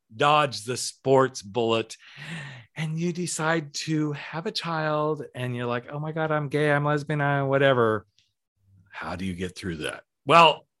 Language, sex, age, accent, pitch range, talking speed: English, male, 40-59, American, 110-150 Hz, 165 wpm